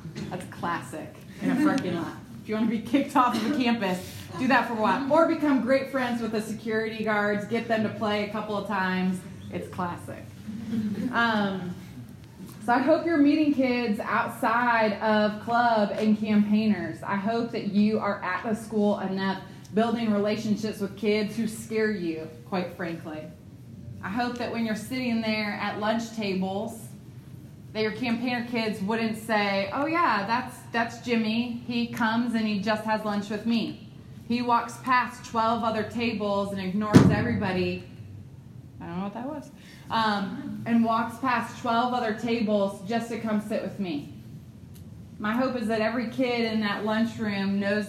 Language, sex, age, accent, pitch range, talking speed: English, female, 20-39, American, 195-230 Hz, 170 wpm